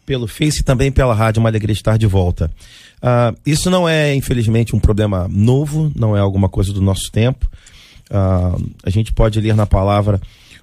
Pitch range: 120-185 Hz